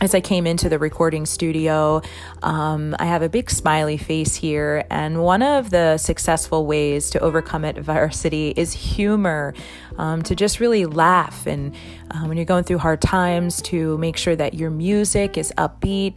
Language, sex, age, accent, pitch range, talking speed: English, female, 30-49, American, 155-185 Hz, 175 wpm